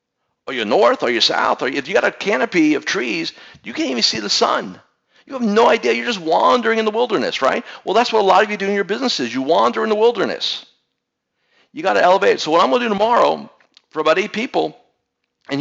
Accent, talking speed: American, 240 wpm